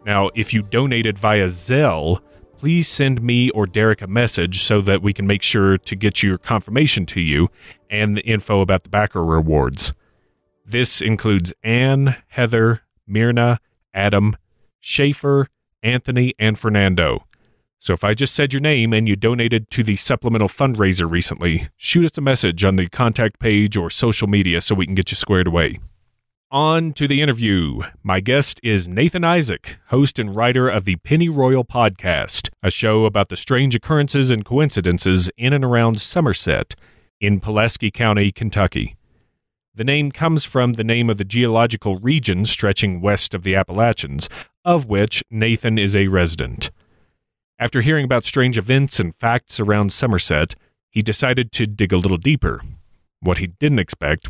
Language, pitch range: English, 95-125 Hz